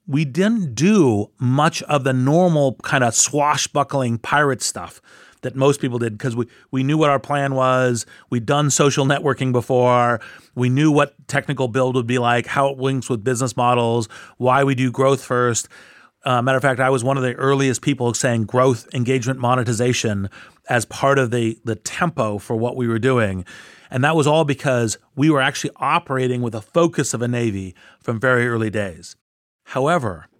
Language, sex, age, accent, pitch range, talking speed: English, male, 40-59, American, 115-145 Hz, 185 wpm